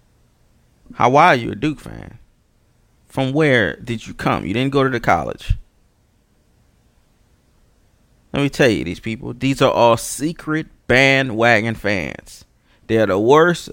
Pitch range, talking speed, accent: 105-130 Hz, 150 wpm, American